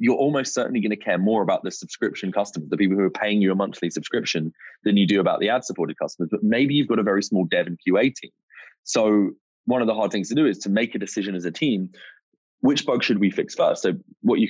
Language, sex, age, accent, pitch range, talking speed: English, male, 20-39, British, 95-115 Hz, 265 wpm